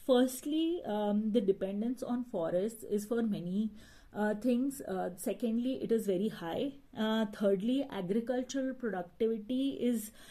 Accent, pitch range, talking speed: native, 195-230 Hz, 130 wpm